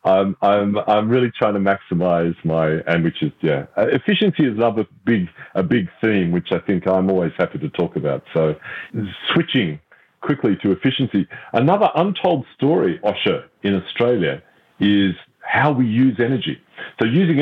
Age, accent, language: 40-59, Australian, English